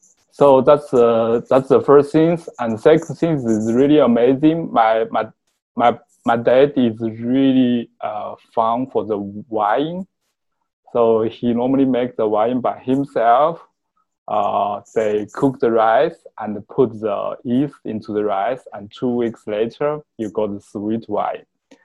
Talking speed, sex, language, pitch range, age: 150 wpm, male, English, 110-140 Hz, 20-39